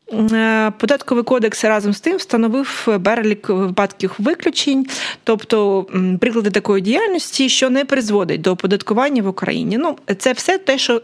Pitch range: 185-240 Hz